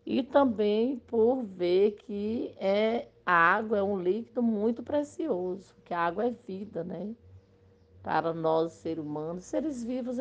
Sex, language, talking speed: female, Portuguese, 145 wpm